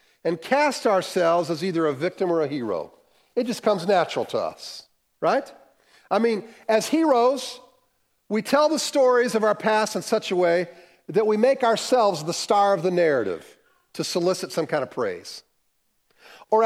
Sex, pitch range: male, 190-285 Hz